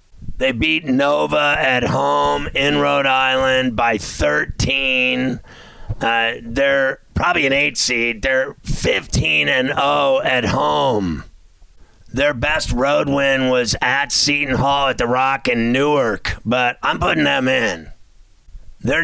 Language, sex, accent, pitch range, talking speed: English, male, American, 115-140 Hz, 130 wpm